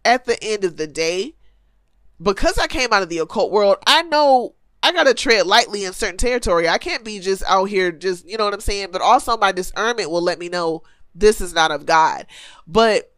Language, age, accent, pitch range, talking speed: English, 20-39, American, 180-240 Hz, 230 wpm